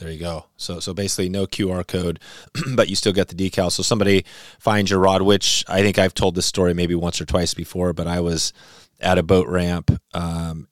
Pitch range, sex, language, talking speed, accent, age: 80-95 Hz, male, English, 225 wpm, American, 30-49